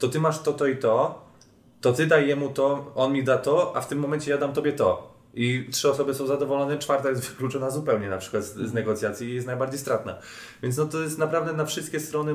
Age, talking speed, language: 20-39, 245 wpm, Polish